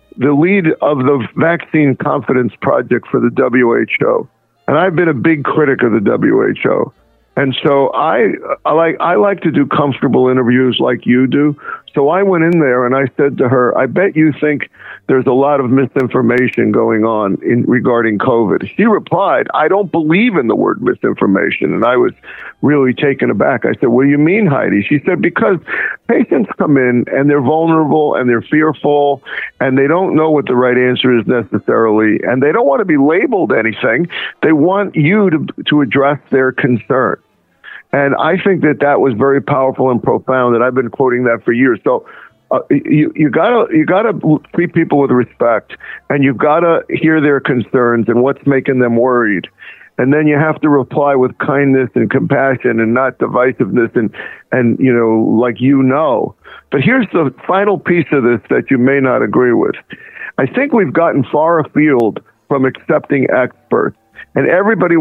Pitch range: 125-155 Hz